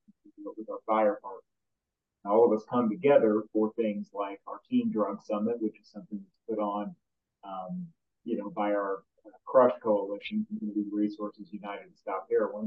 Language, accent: English, American